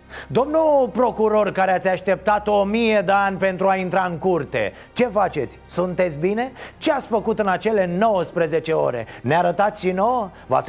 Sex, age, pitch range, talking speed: male, 30-49, 150-210 Hz, 170 wpm